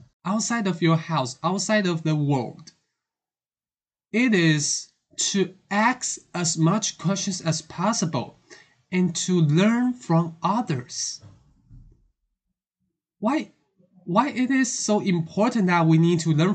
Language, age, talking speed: English, 20-39, 120 wpm